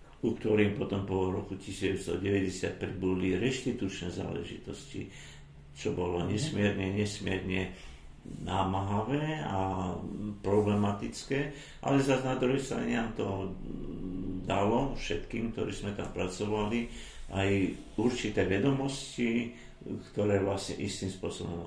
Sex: male